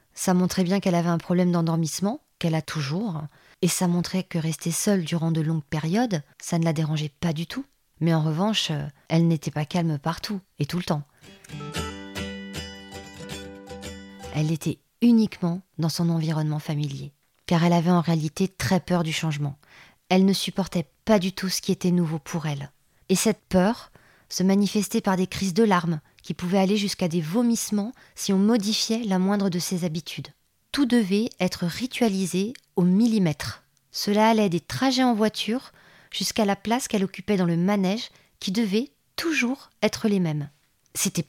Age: 20-39